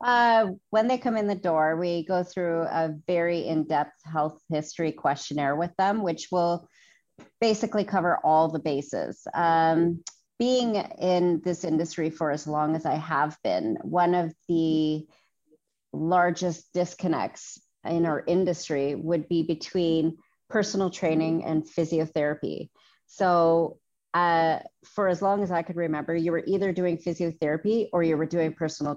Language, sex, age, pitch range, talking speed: English, female, 30-49, 155-180 Hz, 145 wpm